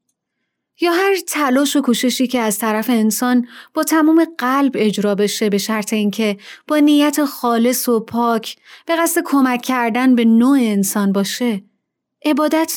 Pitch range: 210-285 Hz